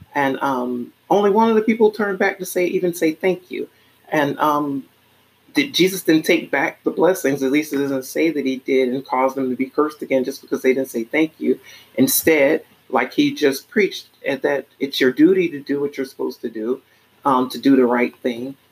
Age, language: 40-59, English